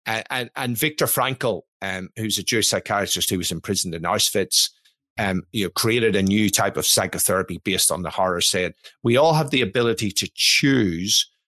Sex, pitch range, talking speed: male, 100-125 Hz, 190 wpm